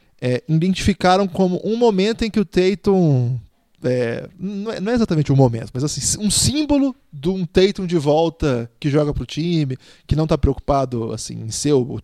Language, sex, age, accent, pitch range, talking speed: Portuguese, male, 20-39, Brazilian, 130-195 Hz, 190 wpm